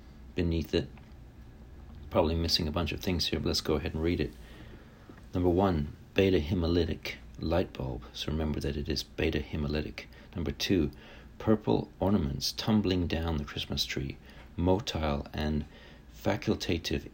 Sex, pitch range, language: male, 75-90 Hz, English